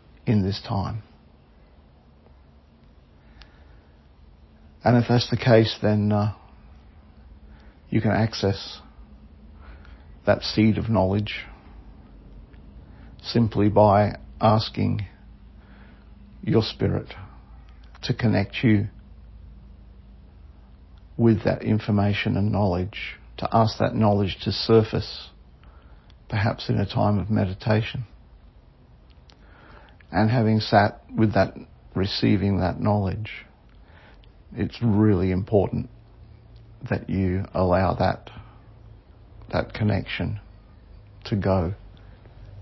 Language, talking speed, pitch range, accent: English, 85 wpm, 85-110 Hz, Australian